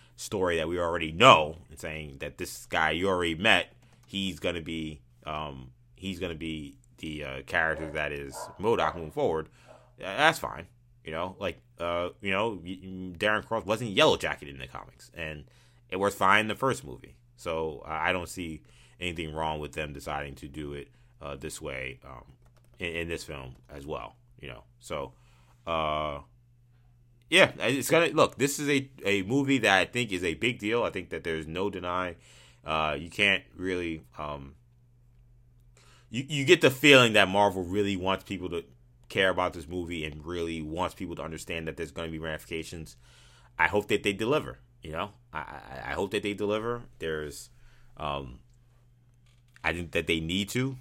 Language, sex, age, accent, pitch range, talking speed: English, male, 30-49, American, 75-120 Hz, 180 wpm